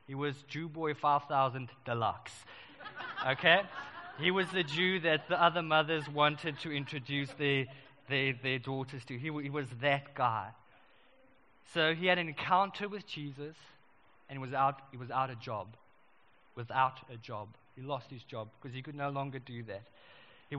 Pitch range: 135-175 Hz